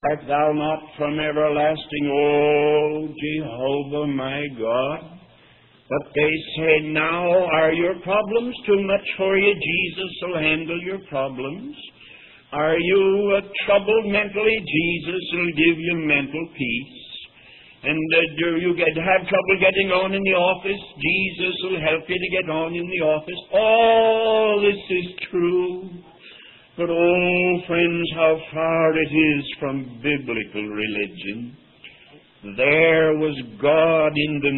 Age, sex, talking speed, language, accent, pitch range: 60-79, male, 135 wpm, English, American, 150-200 Hz